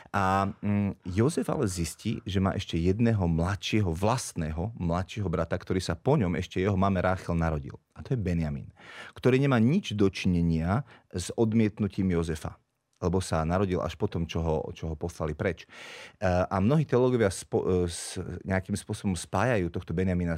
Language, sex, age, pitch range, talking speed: Slovak, male, 30-49, 90-110 Hz, 150 wpm